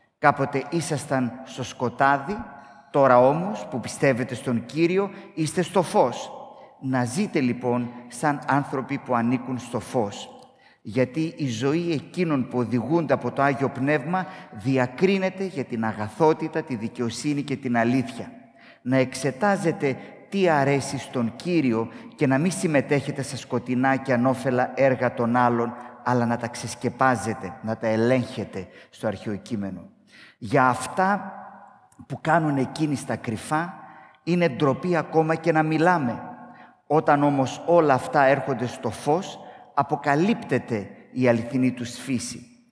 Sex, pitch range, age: male, 120-155 Hz, 30-49